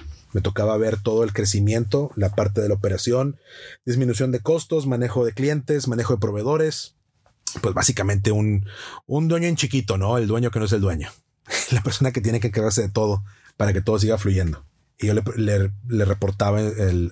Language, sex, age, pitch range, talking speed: Spanish, male, 30-49, 100-125 Hz, 195 wpm